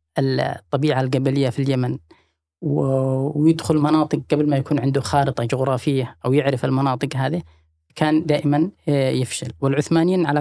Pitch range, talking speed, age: 120-155 Hz, 120 wpm, 20-39